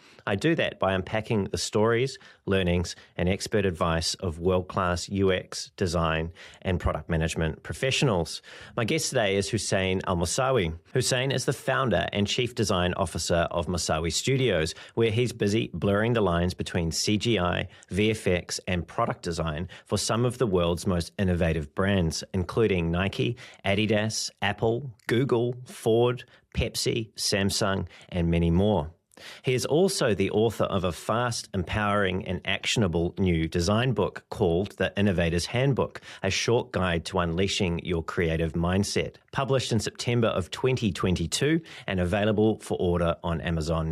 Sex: male